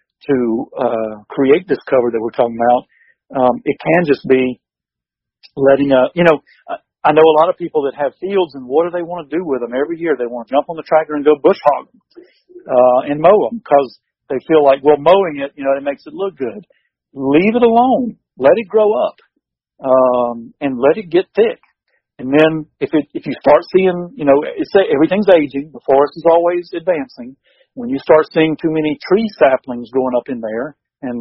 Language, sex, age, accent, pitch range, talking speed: English, male, 50-69, American, 130-165 Hz, 215 wpm